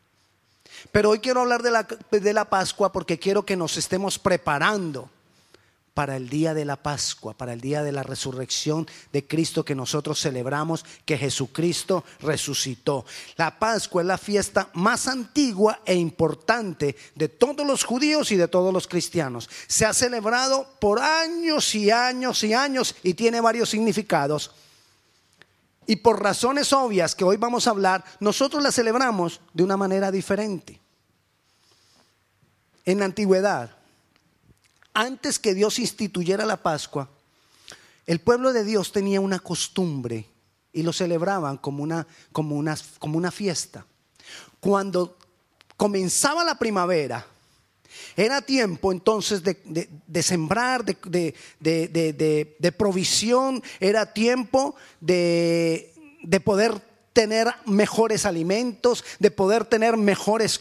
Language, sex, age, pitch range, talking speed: Spanish, male, 30-49, 160-225 Hz, 130 wpm